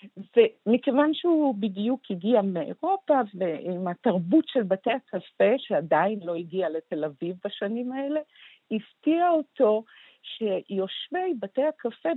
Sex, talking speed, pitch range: female, 110 wpm, 175-240 Hz